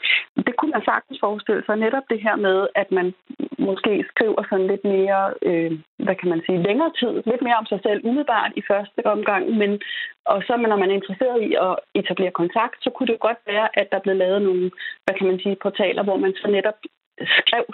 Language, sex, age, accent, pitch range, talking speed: Danish, female, 30-49, native, 190-245 Hz, 220 wpm